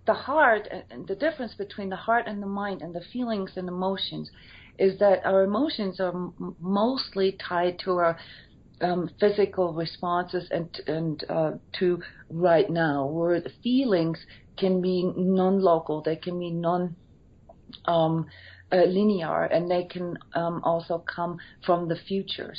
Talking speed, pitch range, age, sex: 150 wpm, 160-190 Hz, 40-59, female